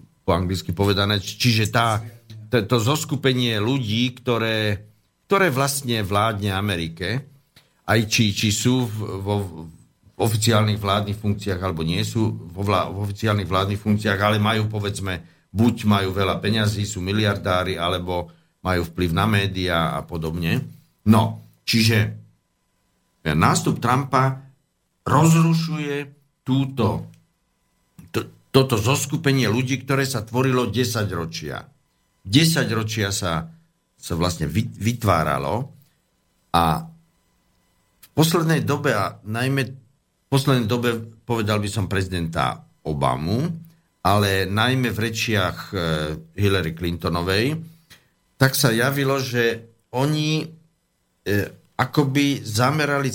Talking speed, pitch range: 105 wpm, 95-130 Hz